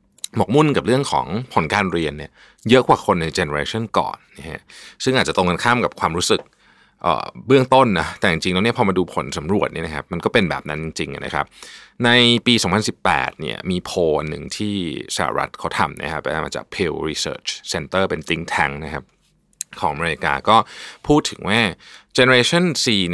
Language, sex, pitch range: Thai, male, 80-120 Hz